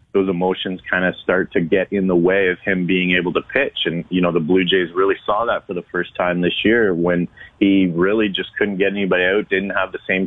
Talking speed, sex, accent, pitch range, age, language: 250 wpm, male, American, 90-100 Hz, 30-49, English